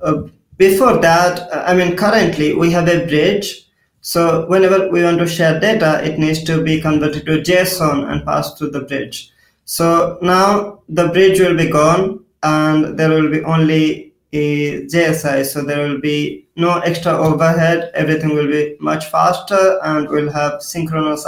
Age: 20-39